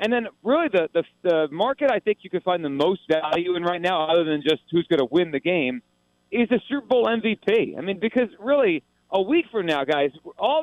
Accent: American